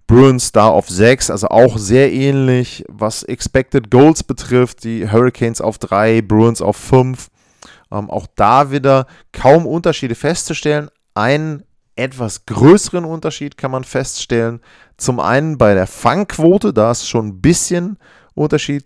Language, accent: German, German